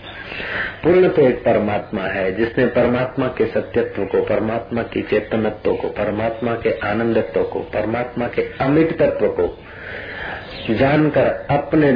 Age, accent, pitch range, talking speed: 50-69, native, 105-140 Hz, 130 wpm